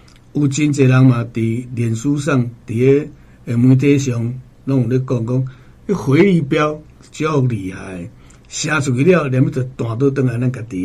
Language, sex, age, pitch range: Chinese, male, 60-79, 110-140 Hz